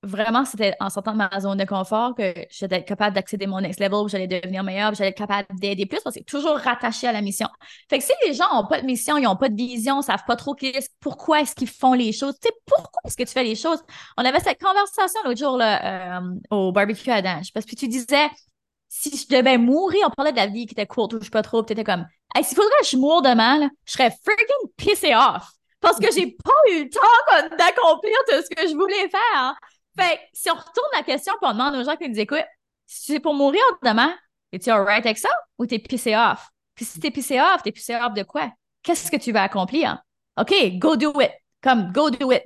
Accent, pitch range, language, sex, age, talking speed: Canadian, 215-300 Hz, English, female, 20-39, 260 wpm